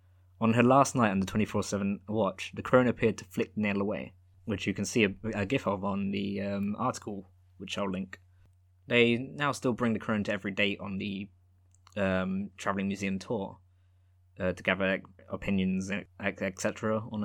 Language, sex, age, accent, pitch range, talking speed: English, male, 20-39, British, 95-110 Hz, 185 wpm